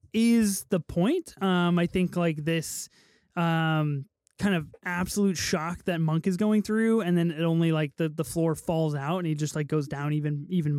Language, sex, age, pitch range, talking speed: English, male, 20-39, 165-205 Hz, 200 wpm